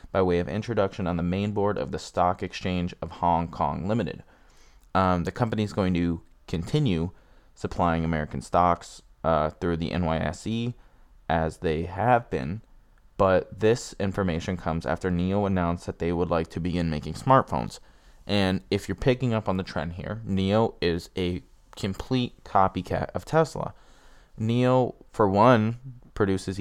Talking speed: 155 wpm